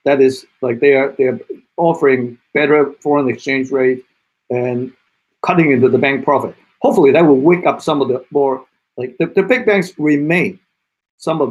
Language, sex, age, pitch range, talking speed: English, male, 50-69, 120-145 Hz, 180 wpm